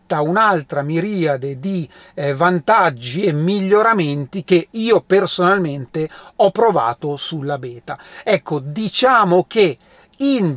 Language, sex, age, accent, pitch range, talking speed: Italian, male, 40-59, native, 155-210 Hz, 95 wpm